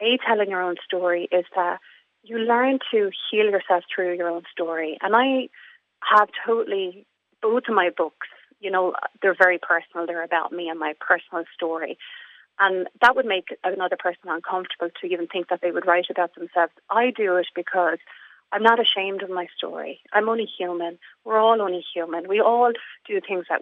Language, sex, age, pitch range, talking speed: English, female, 30-49, 175-215 Hz, 190 wpm